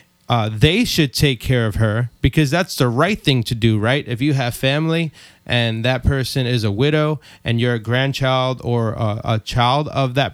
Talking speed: 205 wpm